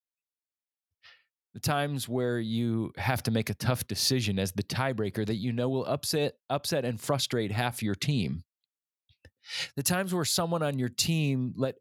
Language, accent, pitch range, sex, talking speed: English, American, 105-135 Hz, male, 165 wpm